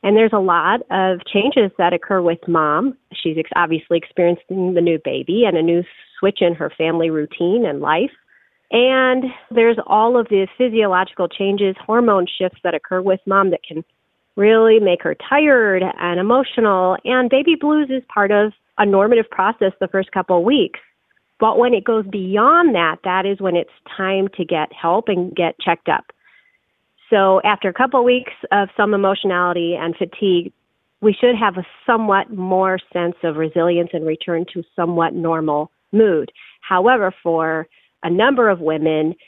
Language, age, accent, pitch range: English, 40-59, American, 175-220 Hz